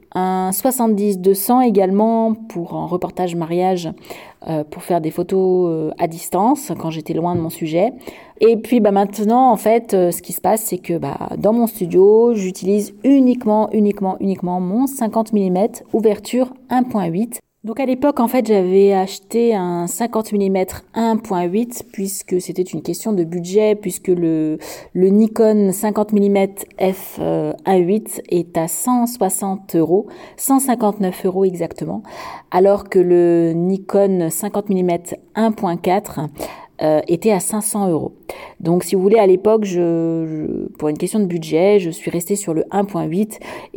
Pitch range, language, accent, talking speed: 175-215 Hz, French, French, 145 wpm